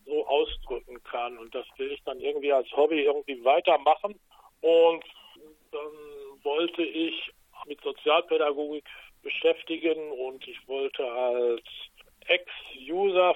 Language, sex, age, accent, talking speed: German, male, 40-59, German, 110 wpm